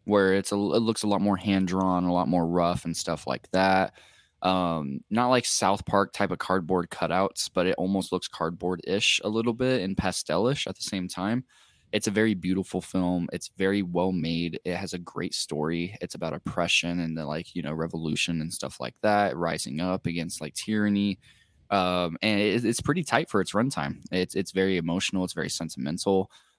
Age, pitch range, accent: 10-29, 90-105 Hz, American